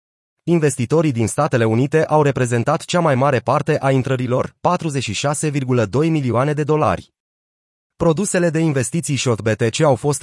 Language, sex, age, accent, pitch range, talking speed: Romanian, male, 30-49, native, 115-150 Hz, 135 wpm